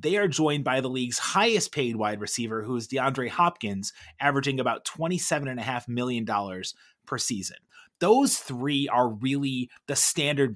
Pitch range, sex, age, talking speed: 120-170 Hz, male, 30-49, 150 wpm